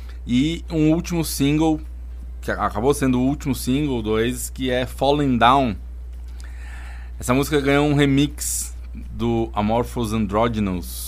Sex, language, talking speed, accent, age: male, Portuguese, 125 wpm, Brazilian, 20-39